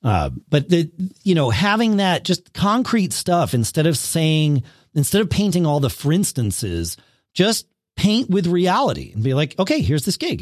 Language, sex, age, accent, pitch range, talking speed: English, male, 40-59, American, 125-185 Hz, 180 wpm